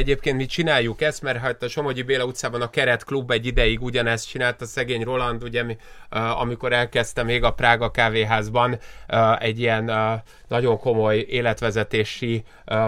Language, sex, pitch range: Hungarian, male, 115-135 Hz